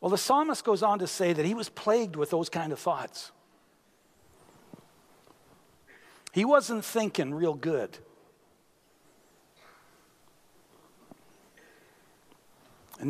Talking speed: 100 wpm